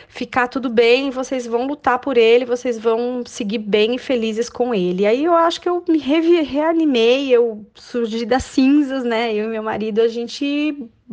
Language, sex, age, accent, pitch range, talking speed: Portuguese, female, 20-39, Brazilian, 205-245 Hz, 185 wpm